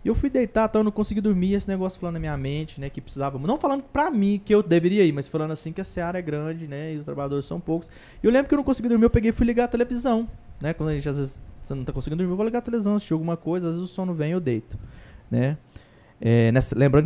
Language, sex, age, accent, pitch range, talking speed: Portuguese, male, 20-39, Brazilian, 140-210 Hz, 300 wpm